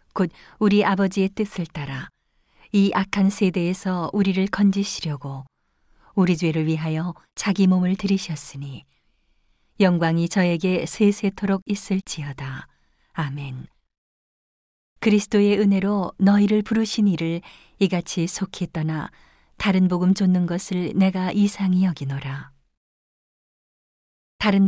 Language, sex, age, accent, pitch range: Korean, female, 40-59, native, 160-200 Hz